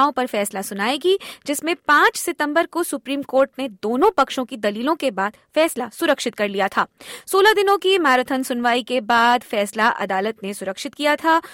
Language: Hindi